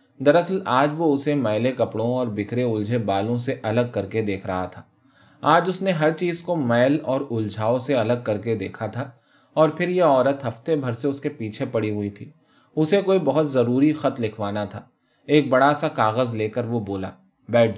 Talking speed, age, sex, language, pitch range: 205 wpm, 20-39, male, Urdu, 110-145 Hz